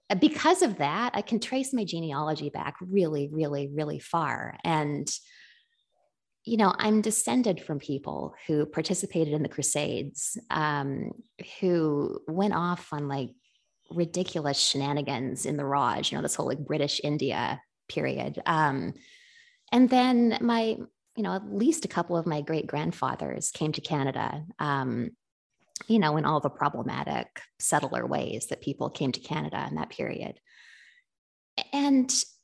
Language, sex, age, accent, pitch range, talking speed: English, female, 20-39, American, 155-255 Hz, 145 wpm